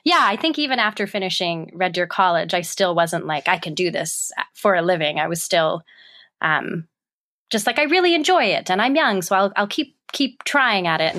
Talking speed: 225 wpm